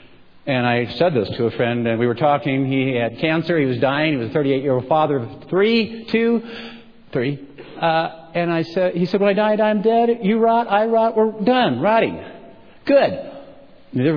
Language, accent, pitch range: English, American, 130-195 Hz